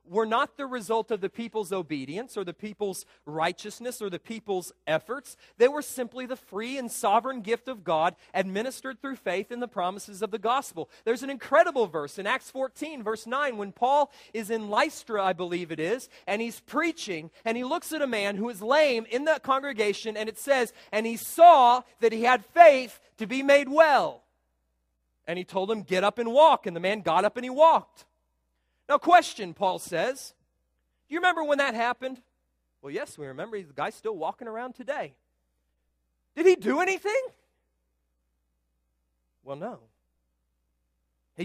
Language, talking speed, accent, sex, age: English, 180 wpm, American, male, 40-59